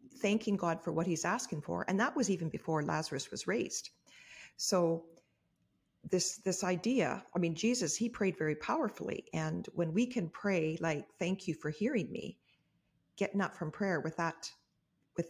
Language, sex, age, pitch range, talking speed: English, female, 40-59, 160-195 Hz, 175 wpm